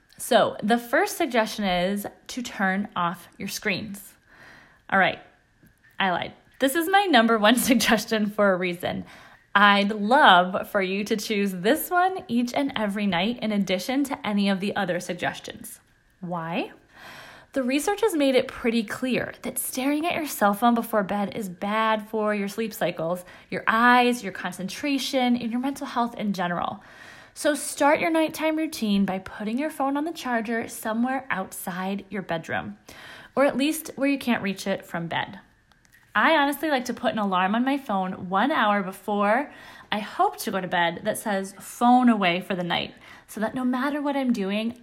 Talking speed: 180 wpm